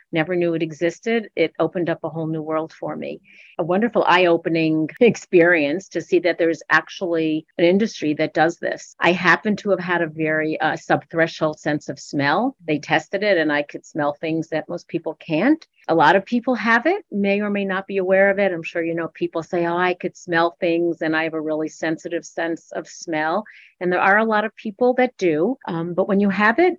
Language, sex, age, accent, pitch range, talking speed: English, female, 50-69, American, 165-210 Hz, 230 wpm